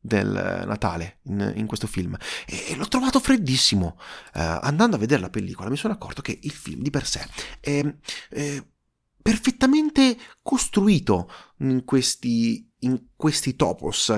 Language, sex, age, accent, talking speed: Italian, male, 30-49, native, 135 wpm